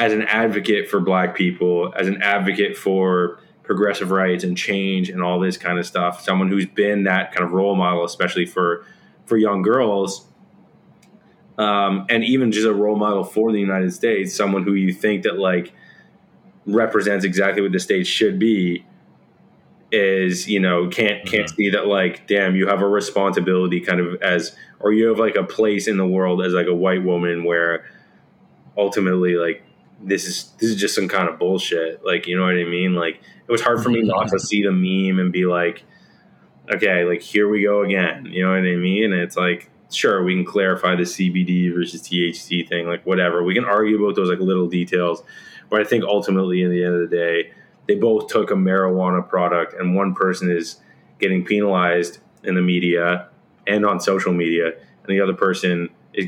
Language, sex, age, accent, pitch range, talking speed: English, male, 20-39, American, 90-100 Hz, 200 wpm